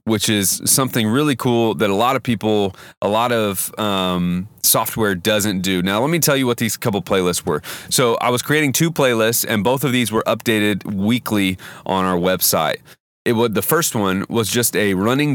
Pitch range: 95-115 Hz